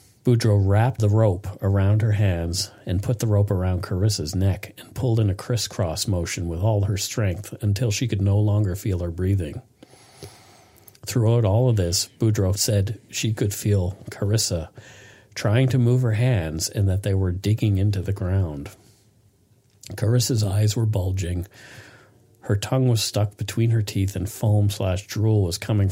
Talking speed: 165 wpm